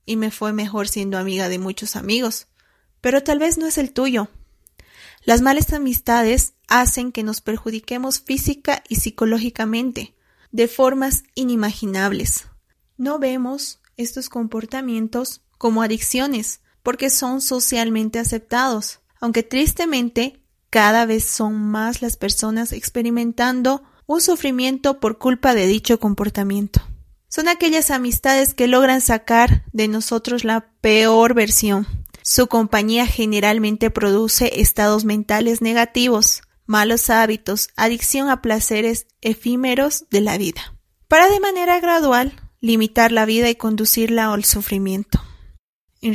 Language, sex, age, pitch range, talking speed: Spanish, female, 30-49, 215-255 Hz, 120 wpm